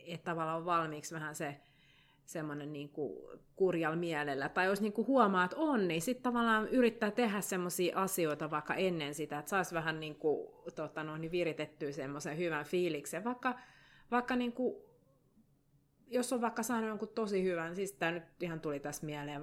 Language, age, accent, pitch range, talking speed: Finnish, 30-49, native, 155-220 Hz, 175 wpm